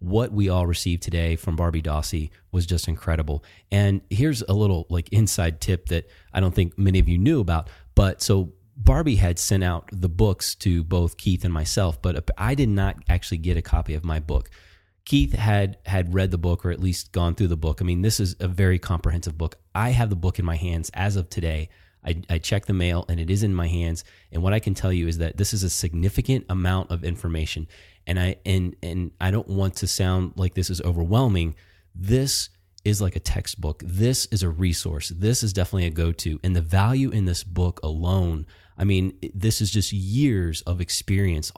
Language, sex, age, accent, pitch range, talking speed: English, male, 30-49, American, 85-100 Hz, 215 wpm